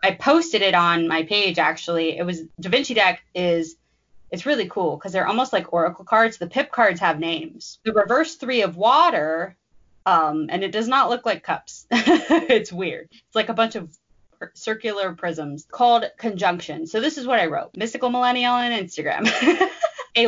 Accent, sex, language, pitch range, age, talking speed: American, female, English, 165-225 Hz, 20-39, 185 wpm